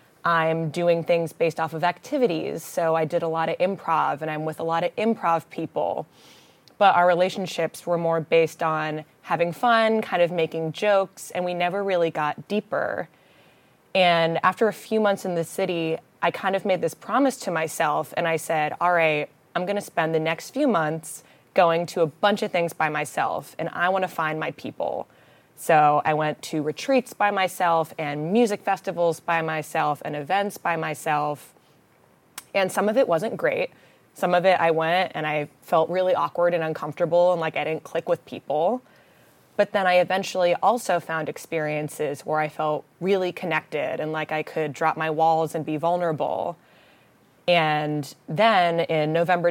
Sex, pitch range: female, 160-185 Hz